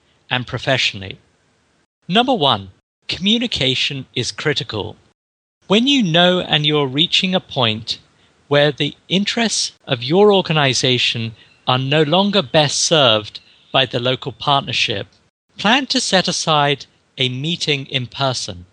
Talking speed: 120 wpm